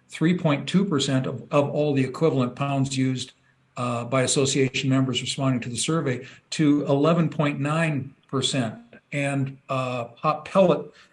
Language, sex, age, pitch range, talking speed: English, male, 50-69, 130-150 Hz, 115 wpm